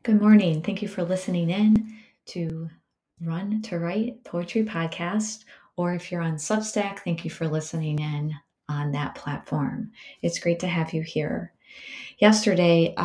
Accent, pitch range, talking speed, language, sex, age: American, 155-185 Hz, 150 wpm, English, female, 30-49